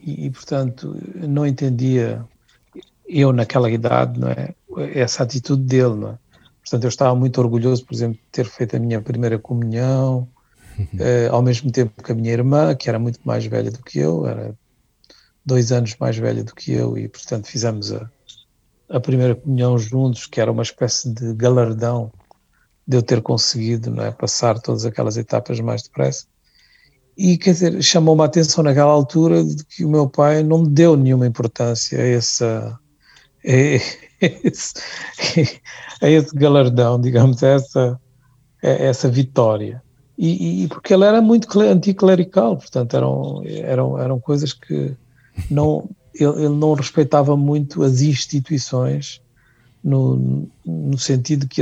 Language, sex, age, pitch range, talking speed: Portuguese, male, 50-69, 120-145 Hz, 155 wpm